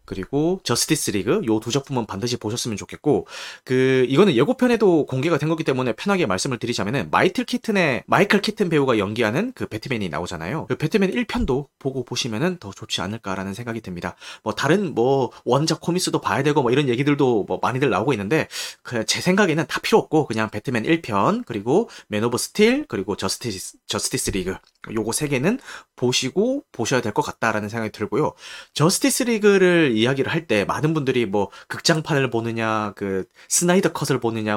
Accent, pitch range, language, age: native, 110-175 Hz, Korean, 30-49